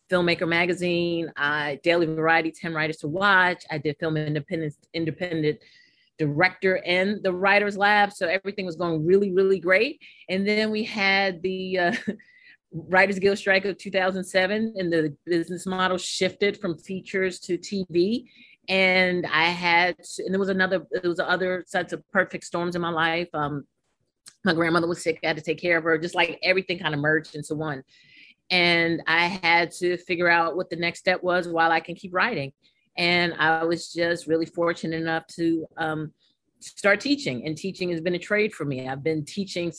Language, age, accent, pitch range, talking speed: English, 30-49, American, 160-190 Hz, 180 wpm